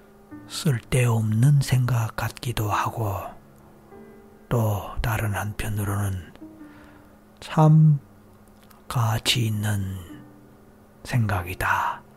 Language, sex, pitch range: Korean, male, 100-130 Hz